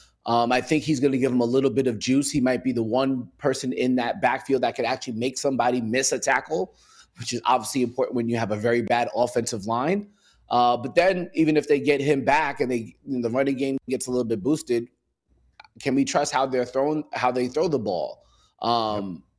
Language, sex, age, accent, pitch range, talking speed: English, male, 20-39, American, 120-145 Hz, 225 wpm